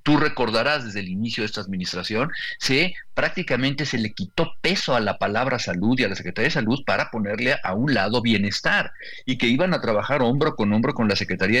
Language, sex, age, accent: Spanish, male, 50-69, Mexican